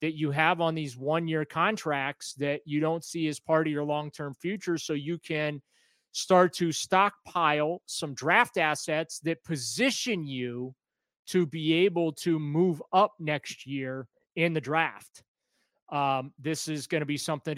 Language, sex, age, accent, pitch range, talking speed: English, male, 30-49, American, 145-185 Hz, 160 wpm